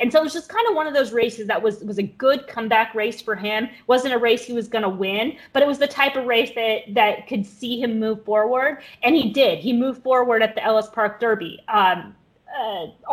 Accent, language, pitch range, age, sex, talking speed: American, English, 220-285 Hz, 20-39, female, 250 wpm